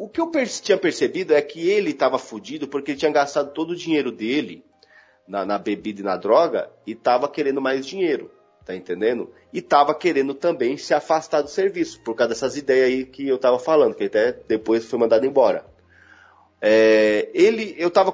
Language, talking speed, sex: Portuguese, 195 wpm, male